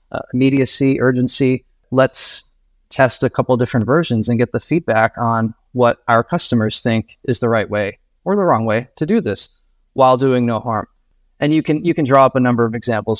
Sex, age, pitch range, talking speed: male, 30-49, 110-130 Hz, 195 wpm